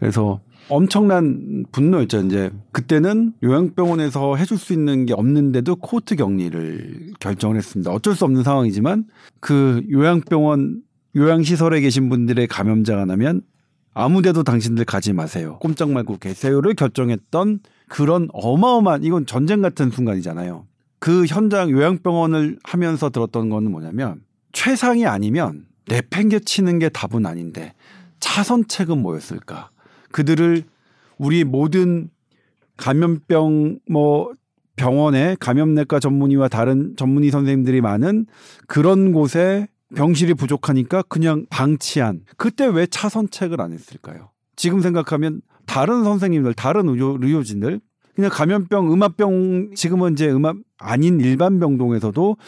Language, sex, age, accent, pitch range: Korean, male, 40-59, native, 125-185 Hz